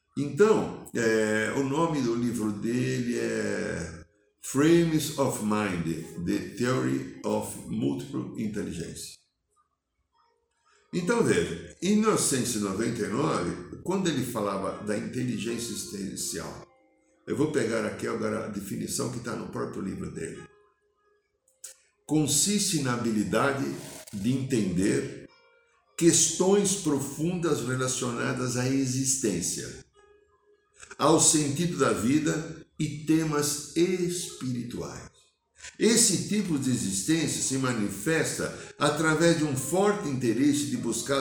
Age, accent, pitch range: 60-79, Brazilian, 115-185 Hz